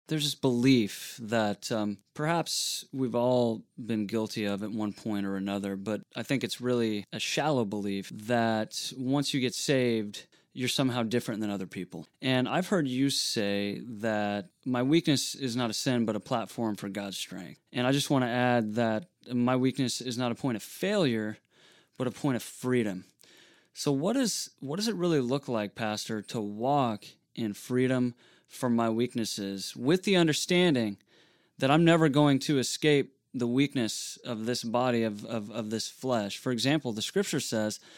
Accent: American